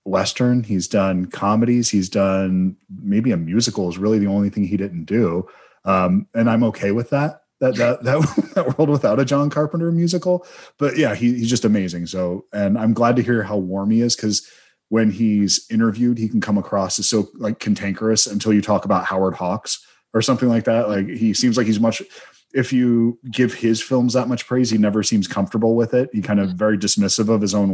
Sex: male